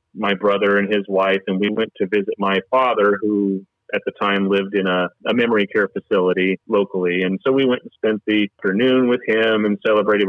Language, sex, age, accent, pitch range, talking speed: English, male, 40-59, American, 95-110 Hz, 210 wpm